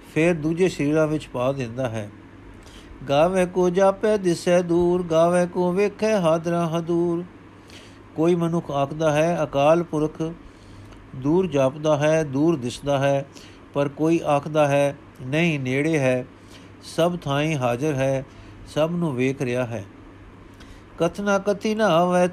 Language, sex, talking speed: Punjabi, male, 130 wpm